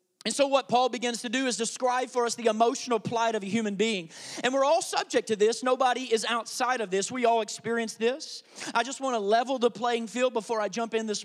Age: 30-49